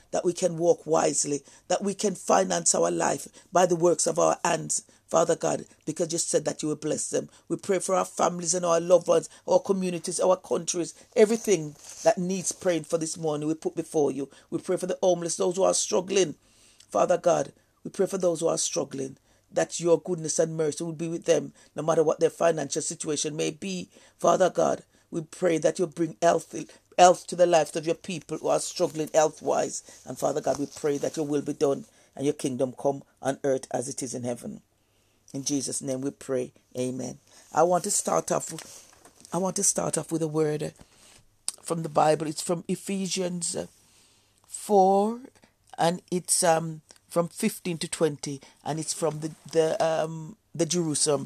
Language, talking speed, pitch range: English, 195 wpm, 140-180 Hz